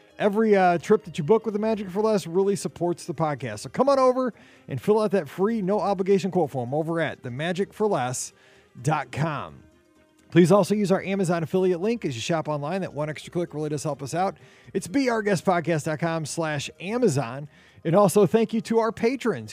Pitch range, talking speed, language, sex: 140-195 Hz, 185 wpm, English, male